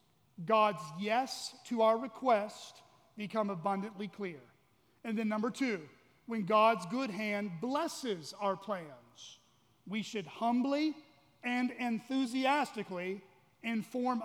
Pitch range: 195-250 Hz